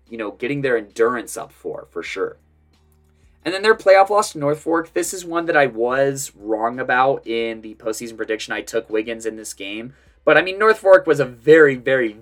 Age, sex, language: 20-39, male, English